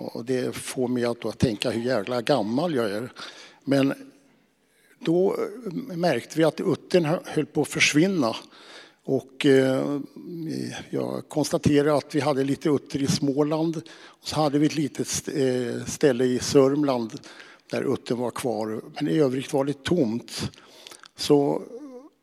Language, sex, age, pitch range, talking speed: English, male, 60-79, 125-155 Hz, 145 wpm